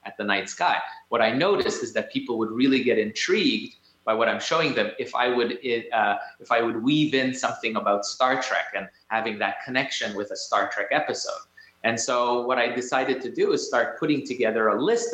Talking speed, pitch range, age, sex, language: 215 wpm, 110-145 Hz, 30-49, male, English